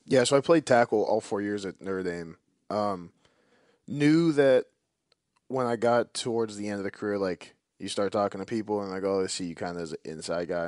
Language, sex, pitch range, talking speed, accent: English, male, 100-130 Hz, 235 wpm, American